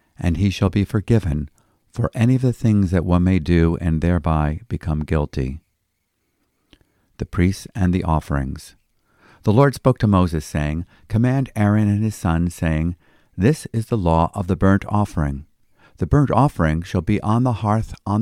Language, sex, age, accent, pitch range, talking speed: English, male, 50-69, American, 80-105 Hz, 170 wpm